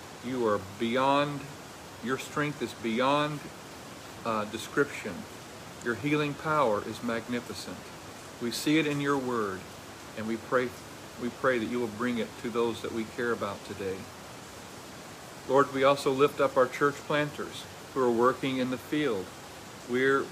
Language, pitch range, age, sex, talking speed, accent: English, 120-150 Hz, 50-69, male, 155 wpm, American